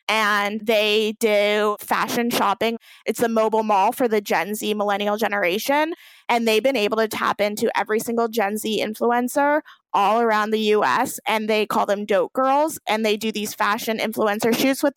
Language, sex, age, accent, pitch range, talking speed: English, female, 20-39, American, 210-235 Hz, 180 wpm